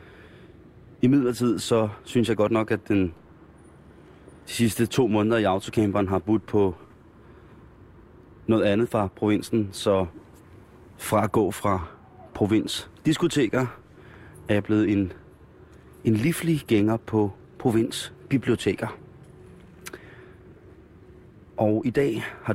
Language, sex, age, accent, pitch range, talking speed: Danish, male, 30-49, native, 90-110 Hz, 110 wpm